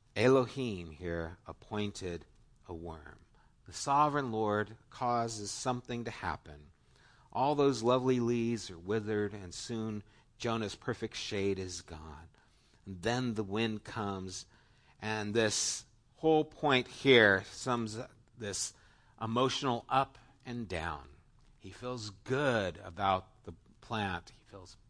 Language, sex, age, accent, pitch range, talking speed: English, male, 50-69, American, 95-120 Hz, 120 wpm